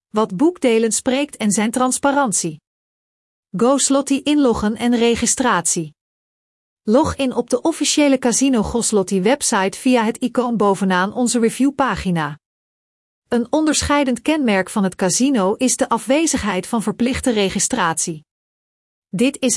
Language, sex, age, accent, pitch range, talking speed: Dutch, female, 40-59, Dutch, 195-270 Hz, 125 wpm